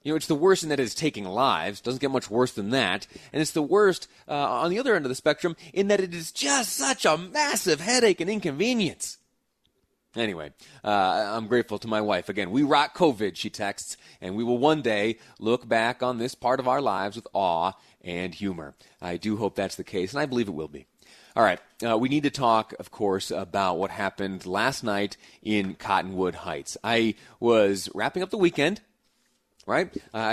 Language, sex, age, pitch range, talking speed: English, male, 30-49, 105-170 Hz, 210 wpm